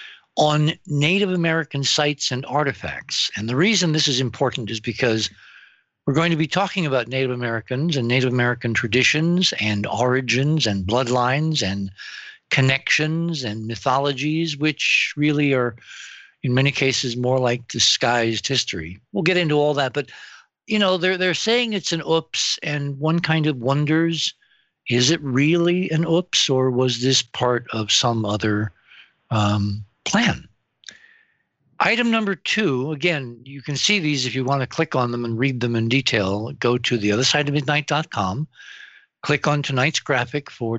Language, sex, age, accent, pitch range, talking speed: English, male, 60-79, American, 120-160 Hz, 160 wpm